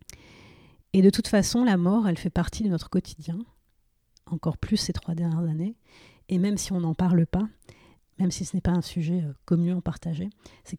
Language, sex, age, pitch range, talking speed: French, female, 40-59, 170-200 Hz, 195 wpm